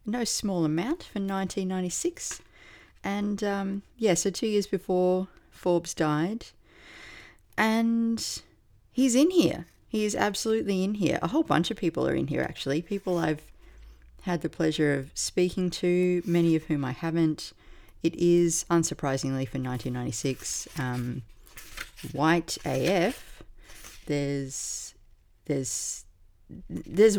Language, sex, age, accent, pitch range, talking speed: English, female, 40-59, Australian, 135-190 Hz, 125 wpm